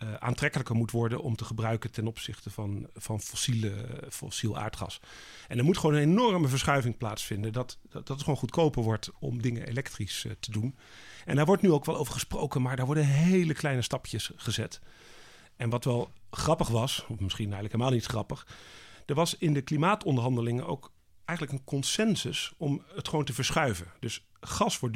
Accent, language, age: Dutch, Dutch, 40-59